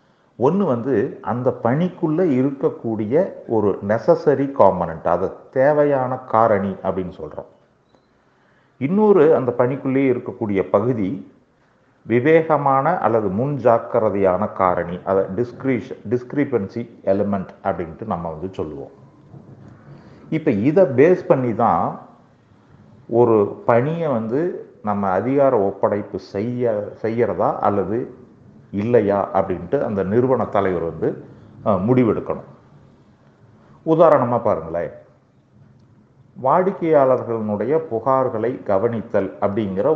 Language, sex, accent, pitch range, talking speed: Tamil, male, native, 100-135 Hz, 85 wpm